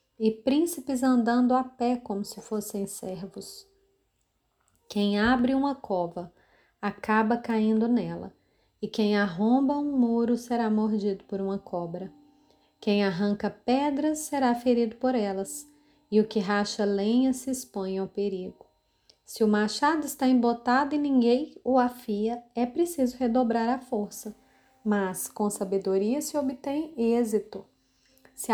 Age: 30-49